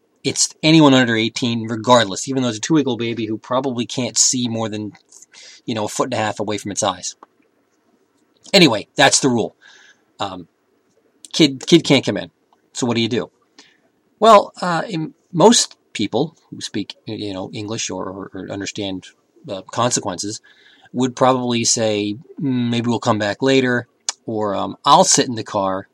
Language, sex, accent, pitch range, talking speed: English, male, American, 100-130 Hz, 170 wpm